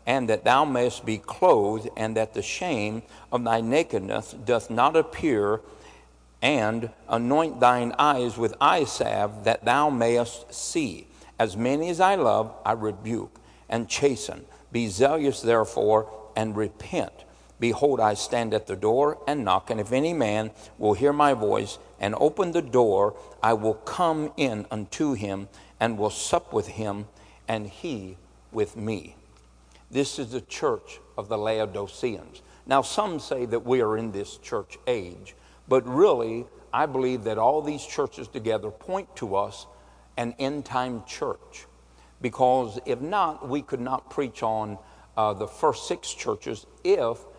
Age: 60-79